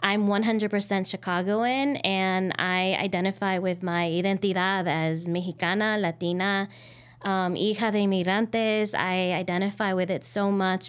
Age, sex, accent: 20-39, female, American